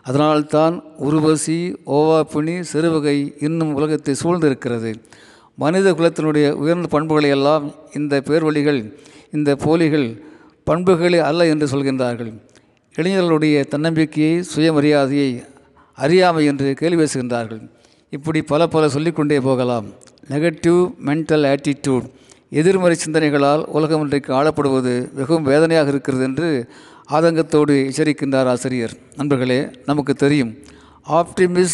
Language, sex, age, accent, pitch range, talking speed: Tamil, male, 50-69, native, 130-155 Hz, 100 wpm